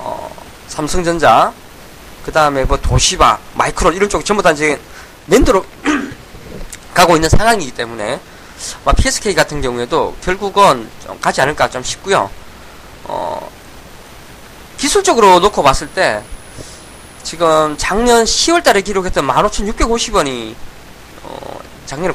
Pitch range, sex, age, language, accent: 155-250 Hz, male, 20-39, Korean, native